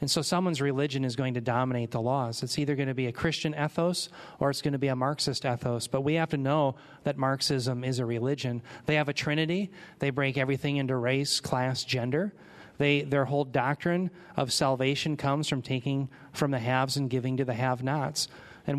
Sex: male